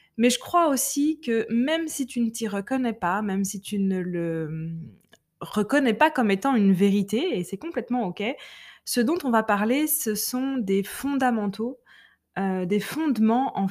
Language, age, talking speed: French, 20-39, 175 wpm